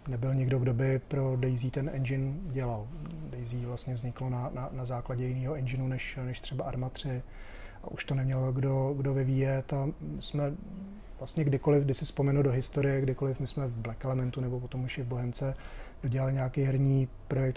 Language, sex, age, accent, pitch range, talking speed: Czech, male, 30-49, native, 125-140 Hz, 190 wpm